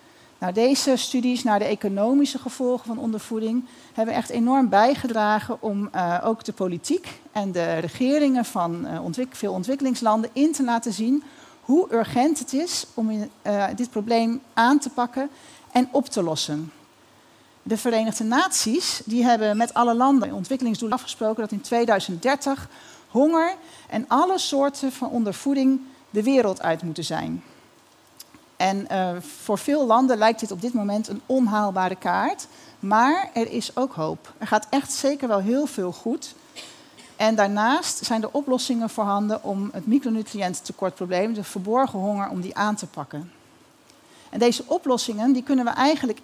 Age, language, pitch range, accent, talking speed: 40-59, Dutch, 205-270 Hz, Dutch, 150 wpm